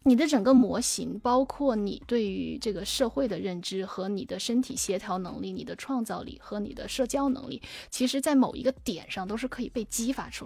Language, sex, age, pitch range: Chinese, female, 20-39, 200-260 Hz